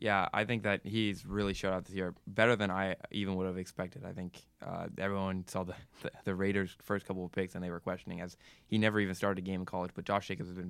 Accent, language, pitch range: American, English, 95-105 Hz